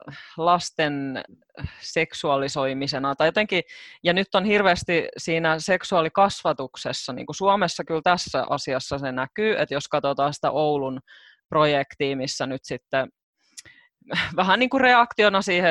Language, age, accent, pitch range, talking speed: Finnish, 20-39, native, 150-230 Hz, 120 wpm